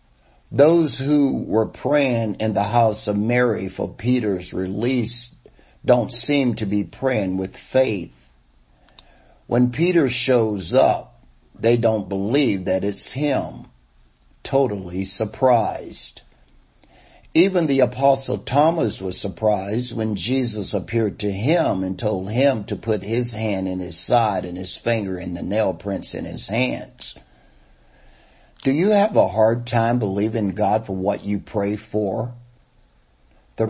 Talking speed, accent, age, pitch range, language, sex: 135 wpm, American, 50-69, 95-120 Hz, English, male